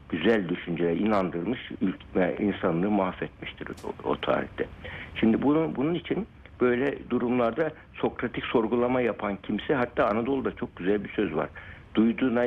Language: Turkish